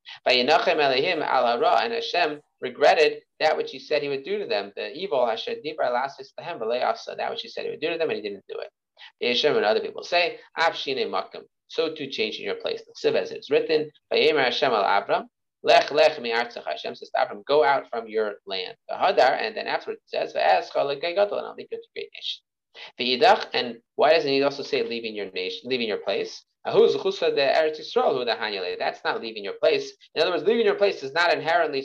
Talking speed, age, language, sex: 150 wpm, 30-49, English, male